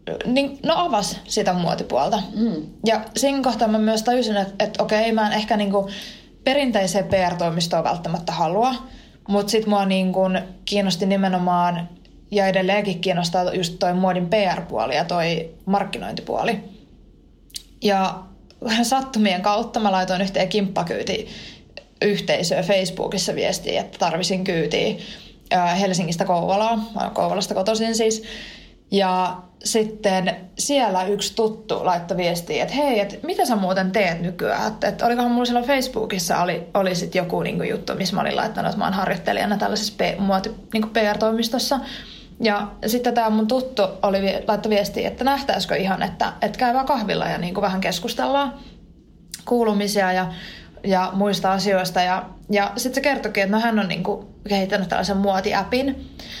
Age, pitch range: 20-39, 185-225 Hz